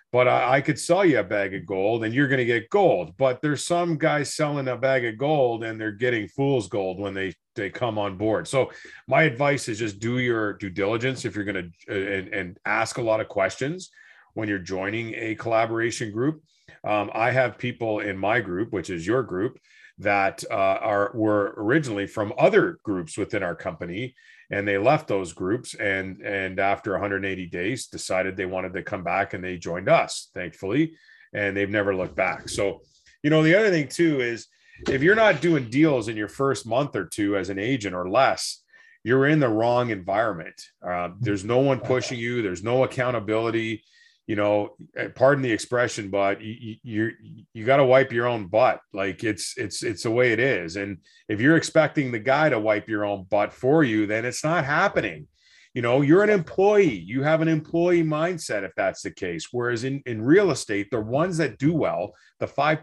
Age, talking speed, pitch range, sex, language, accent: 40-59, 200 wpm, 100-140 Hz, male, English, American